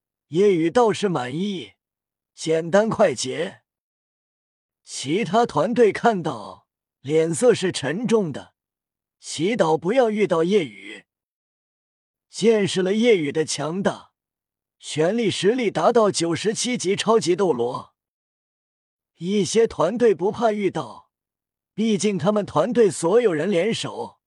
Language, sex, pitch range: Chinese, male, 155-220 Hz